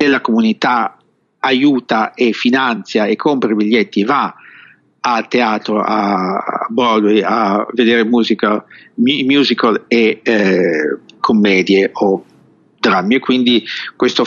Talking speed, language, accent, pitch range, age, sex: 110 wpm, English, Italian, 110-130 Hz, 50-69, male